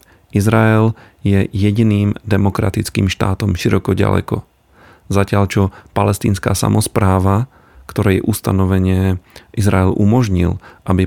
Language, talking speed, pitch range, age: Slovak, 85 wpm, 95-105 Hz, 40-59